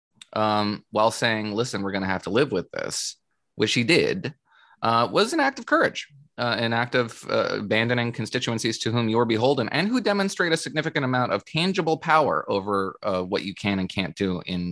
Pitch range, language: 95-120 Hz, English